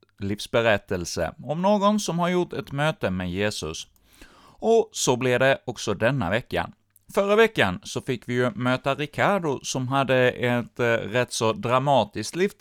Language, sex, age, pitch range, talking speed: Swedish, male, 30-49, 100-135 Hz, 150 wpm